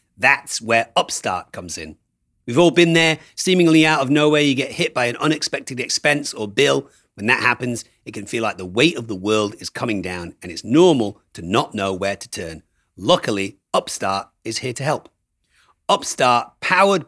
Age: 40-59